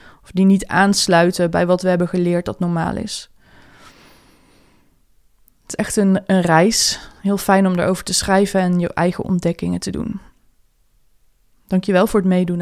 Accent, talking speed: Dutch, 160 wpm